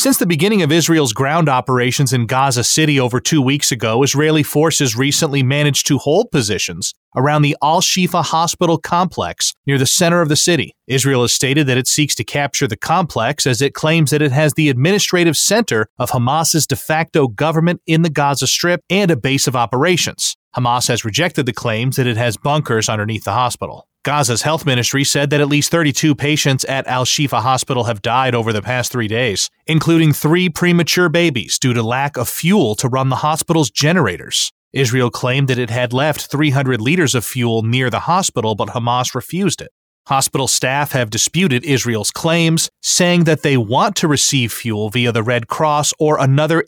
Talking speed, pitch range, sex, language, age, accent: 190 wpm, 125-160 Hz, male, English, 30-49, American